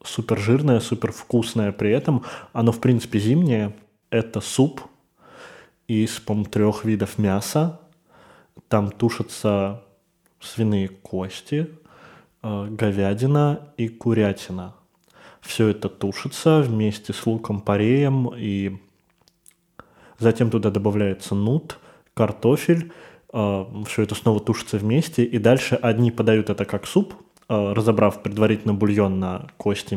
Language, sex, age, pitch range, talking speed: Russian, male, 20-39, 105-120 Hz, 110 wpm